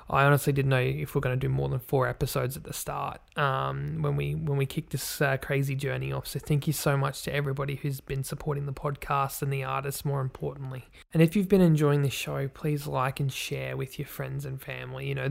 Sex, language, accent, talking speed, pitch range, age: male, English, Australian, 245 wpm, 135-150 Hz, 20-39